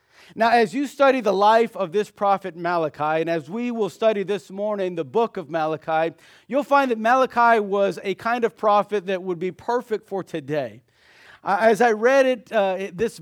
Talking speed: 190 wpm